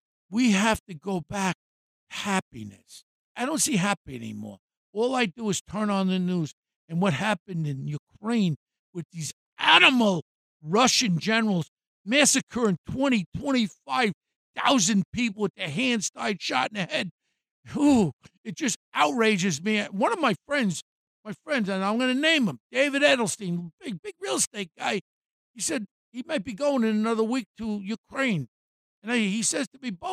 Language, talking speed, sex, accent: English, 165 wpm, male, American